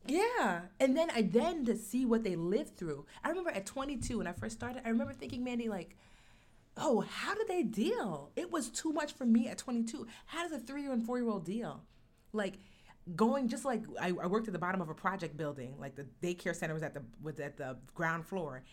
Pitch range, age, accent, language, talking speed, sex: 170-235 Hz, 30-49, American, English, 230 wpm, female